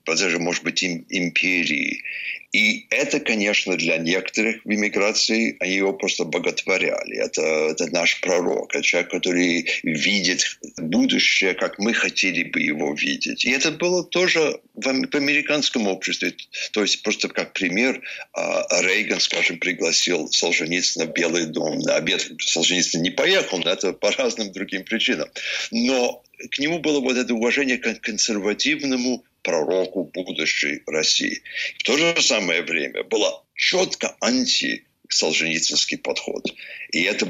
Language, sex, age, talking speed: Russian, male, 60-79, 135 wpm